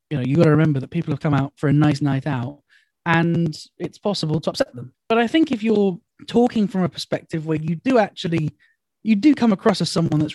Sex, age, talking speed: male, 20-39, 245 wpm